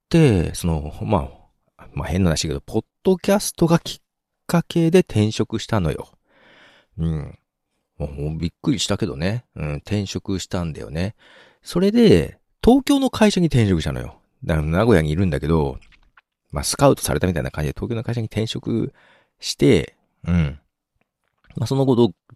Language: Japanese